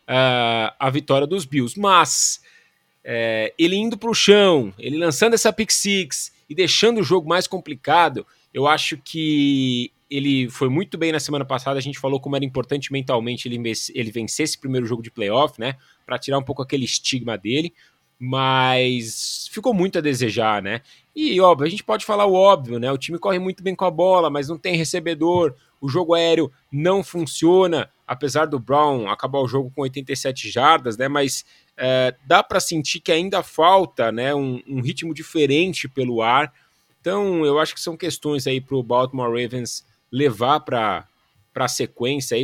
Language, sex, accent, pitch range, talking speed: Portuguese, male, Brazilian, 130-180 Hz, 180 wpm